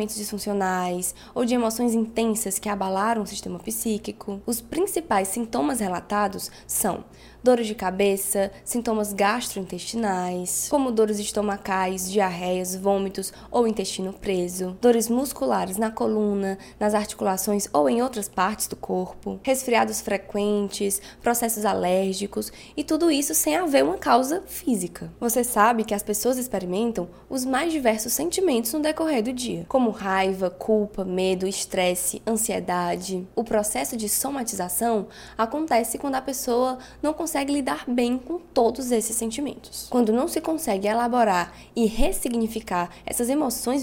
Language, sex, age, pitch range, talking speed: Portuguese, female, 10-29, 195-255 Hz, 135 wpm